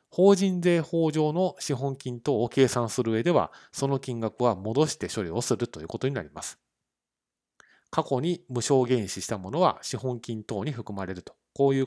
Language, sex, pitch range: Japanese, male, 105-155 Hz